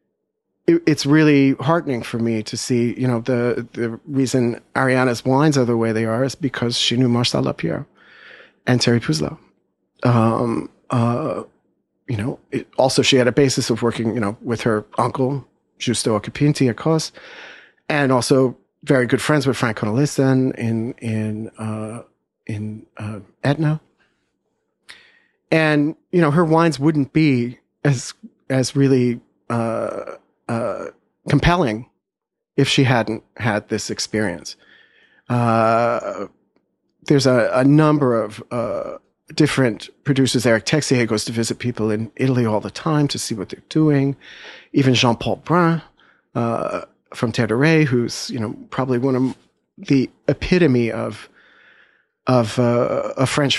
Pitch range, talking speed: 115-140 Hz, 140 wpm